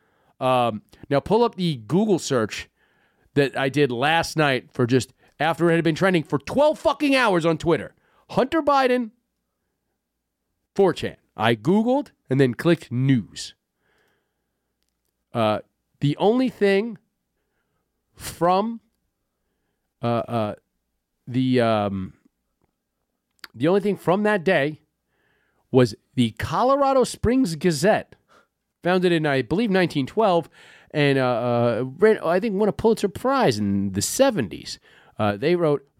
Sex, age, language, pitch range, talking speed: male, 40-59, English, 135-215 Hz, 125 wpm